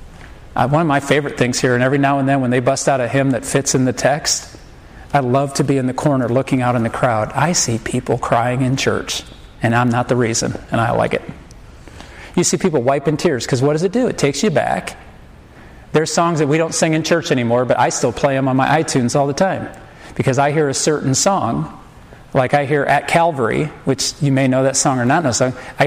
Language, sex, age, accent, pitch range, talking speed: English, male, 40-59, American, 125-150 Hz, 250 wpm